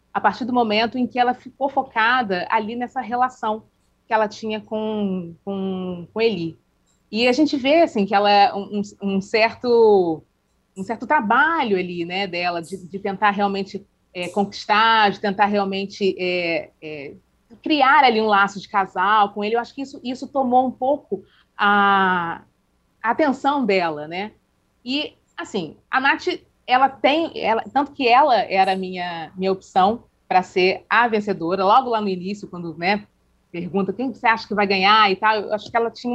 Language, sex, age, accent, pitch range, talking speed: Portuguese, female, 30-49, Brazilian, 195-250 Hz, 175 wpm